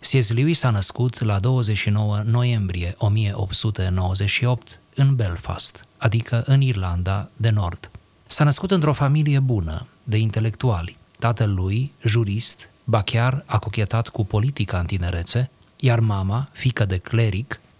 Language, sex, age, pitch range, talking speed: Romanian, male, 30-49, 100-125 Hz, 125 wpm